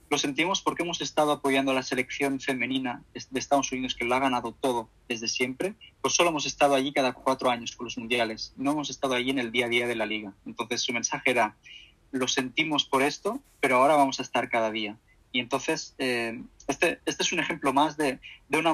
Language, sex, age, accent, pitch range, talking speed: Spanish, male, 20-39, Spanish, 120-140 Hz, 225 wpm